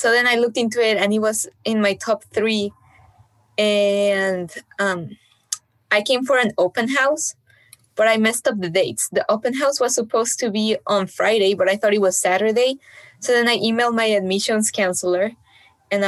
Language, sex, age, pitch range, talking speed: English, female, 20-39, 190-250 Hz, 185 wpm